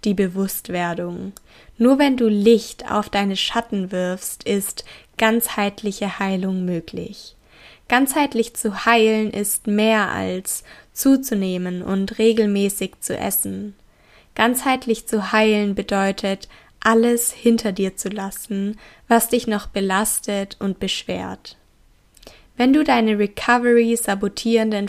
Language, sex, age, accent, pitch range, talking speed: German, female, 10-29, German, 195-230 Hz, 105 wpm